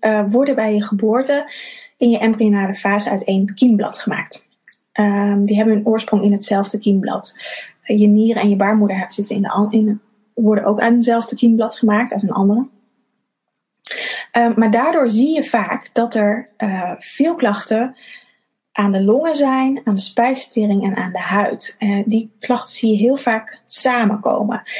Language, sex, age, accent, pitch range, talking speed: Dutch, female, 20-39, Dutch, 205-235 Hz, 170 wpm